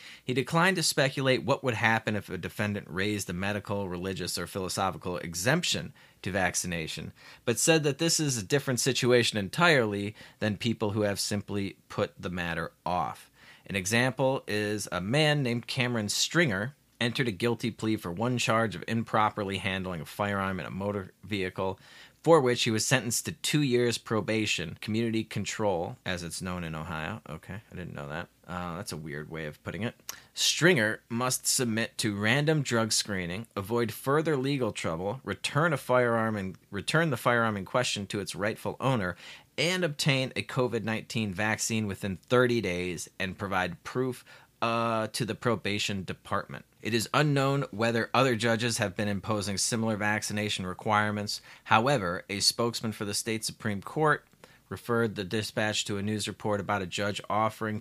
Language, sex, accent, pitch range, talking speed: English, male, American, 100-125 Hz, 165 wpm